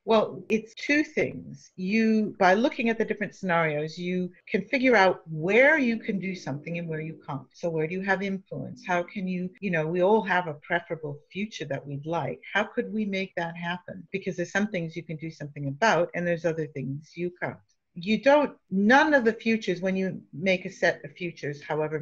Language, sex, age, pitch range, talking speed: English, female, 50-69, 160-200 Hz, 215 wpm